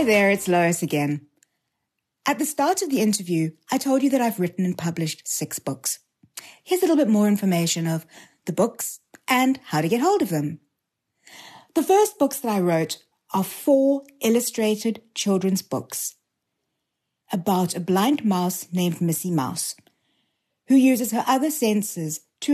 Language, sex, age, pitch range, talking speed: English, female, 60-79, 165-255 Hz, 160 wpm